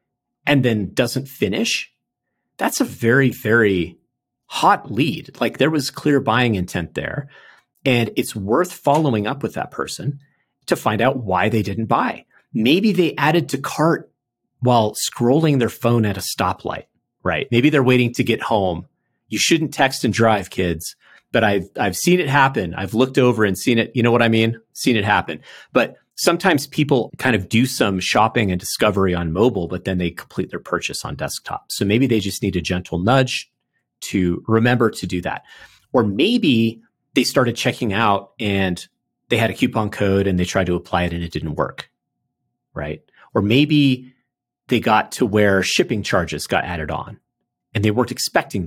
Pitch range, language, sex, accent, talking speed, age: 95-130 Hz, English, male, American, 180 wpm, 40-59